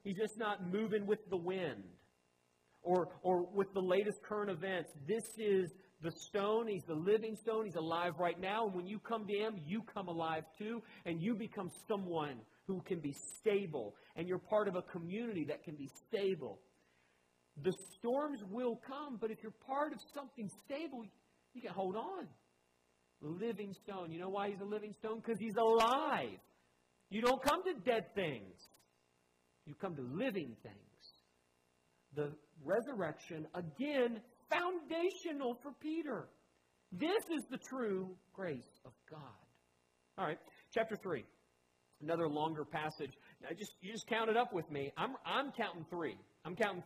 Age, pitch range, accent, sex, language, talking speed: 40-59, 155-220 Hz, American, male, English, 160 wpm